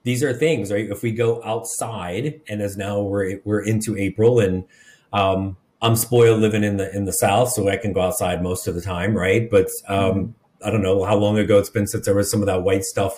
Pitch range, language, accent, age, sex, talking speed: 100-120 Hz, English, American, 30-49, male, 240 wpm